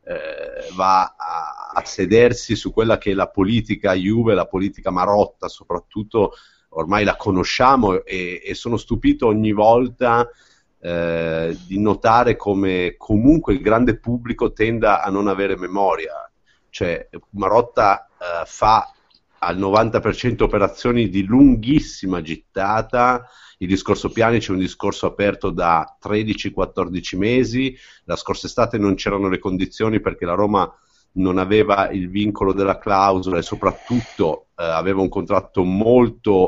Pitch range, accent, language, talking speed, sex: 95-120 Hz, native, Italian, 135 wpm, male